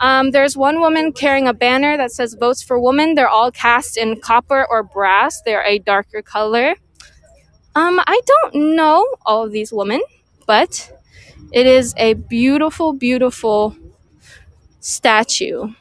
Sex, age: female, 20-39